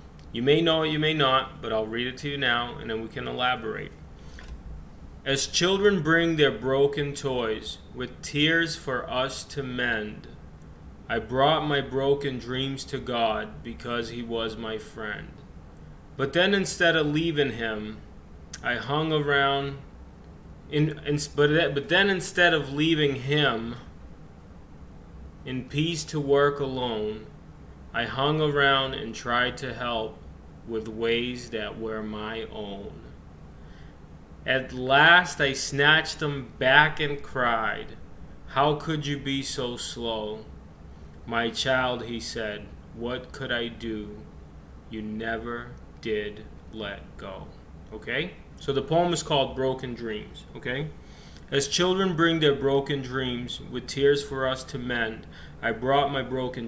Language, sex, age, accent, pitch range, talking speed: English, male, 20-39, American, 105-140 Hz, 140 wpm